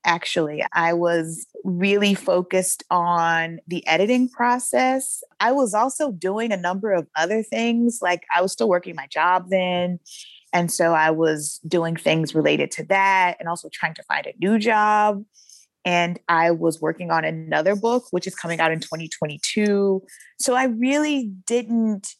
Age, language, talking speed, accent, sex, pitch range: 20-39, English, 160 wpm, American, female, 170-230 Hz